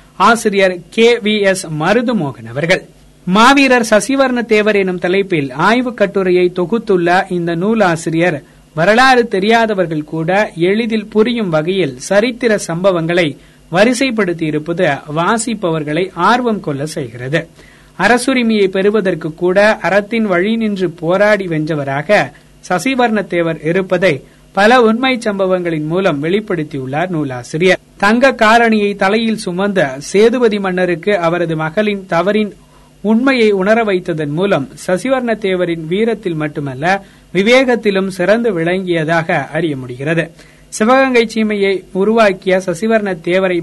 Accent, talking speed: native, 100 wpm